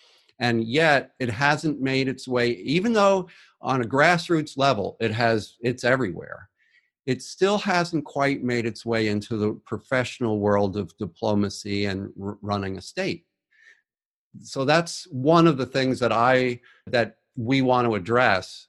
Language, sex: English, male